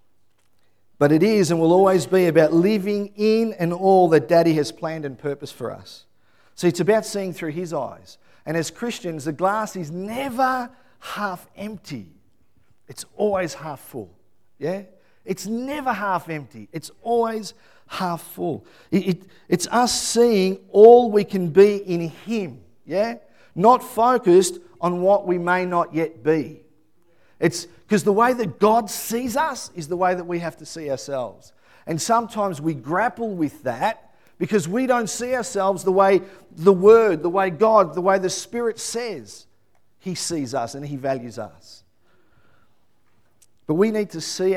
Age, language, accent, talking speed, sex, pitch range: 50-69, English, Australian, 165 wpm, male, 145-205 Hz